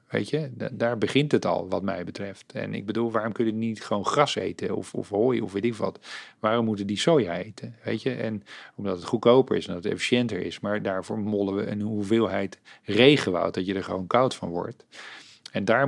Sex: male